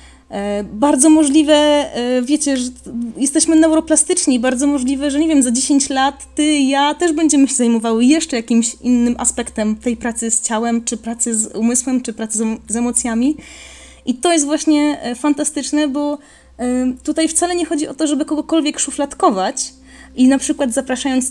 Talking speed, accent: 160 wpm, native